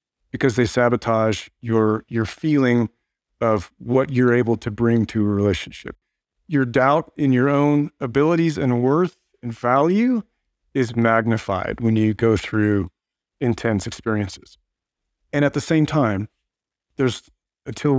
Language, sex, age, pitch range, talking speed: English, male, 40-59, 105-125 Hz, 135 wpm